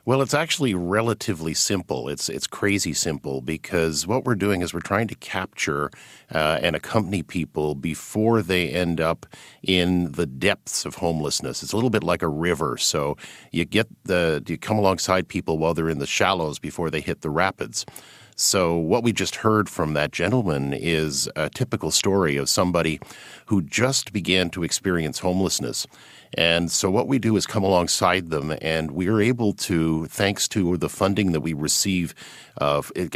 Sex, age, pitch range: male, 50-69, 80-105 Hz